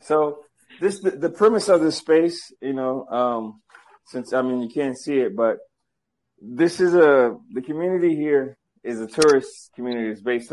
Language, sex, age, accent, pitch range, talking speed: Russian, male, 20-39, American, 110-135 Hz, 175 wpm